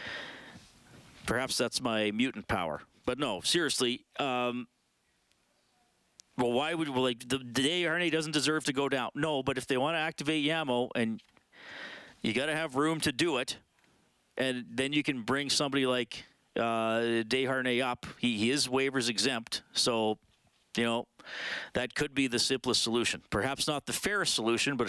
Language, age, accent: English, 40-59, American